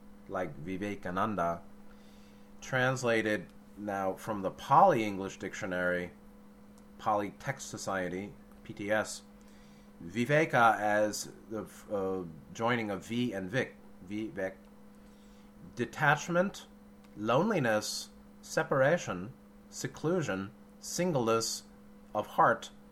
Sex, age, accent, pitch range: male, 30-49, American, 95-110 Hz